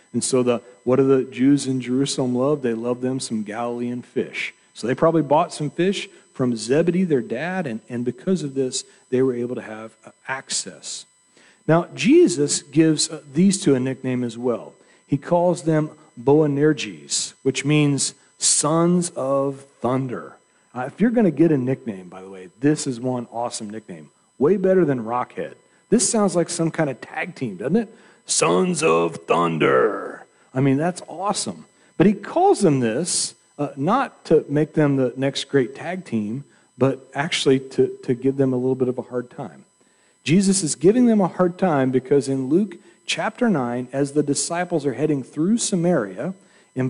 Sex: male